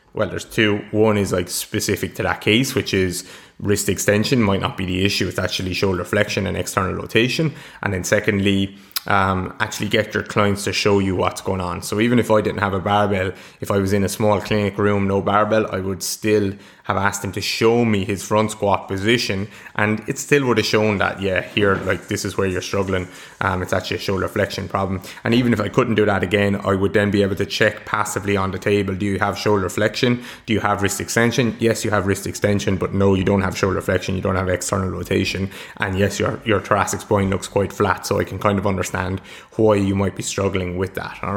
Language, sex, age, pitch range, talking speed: English, male, 20-39, 100-110 Hz, 235 wpm